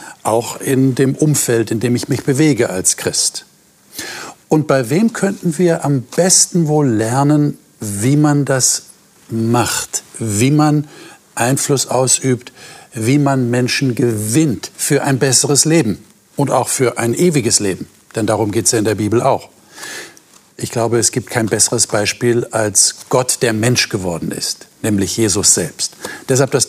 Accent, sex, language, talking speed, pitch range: German, male, German, 155 wpm, 115-145 Hz